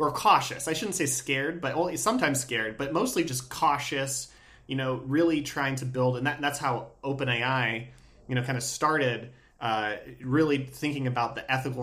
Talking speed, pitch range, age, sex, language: 170 wpm, 125-145 Hz, 20-39, male, English